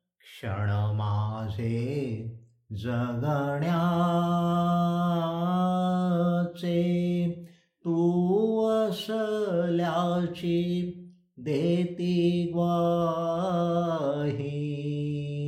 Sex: male